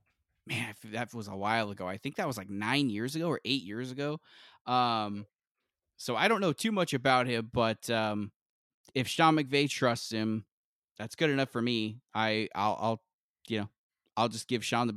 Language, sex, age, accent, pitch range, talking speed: English, male, 20-39, American, 115-135 Hz, 200 wpm